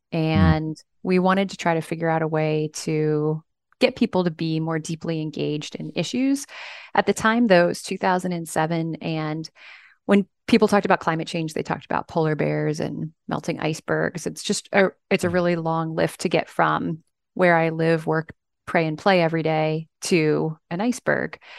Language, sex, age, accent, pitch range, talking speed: English, female, 30-49, American, 160-195 Hz, 180 wpm